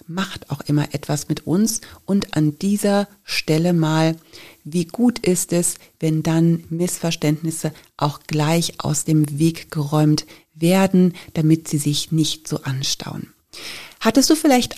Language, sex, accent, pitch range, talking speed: German, female, German, 155-200 Hz, 140 wpm